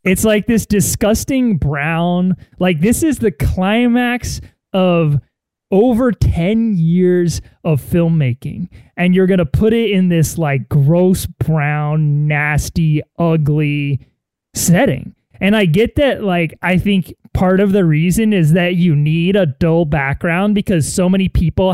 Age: 20-39